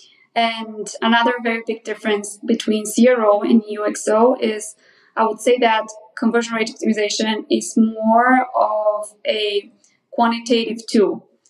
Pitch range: 220-250 Hz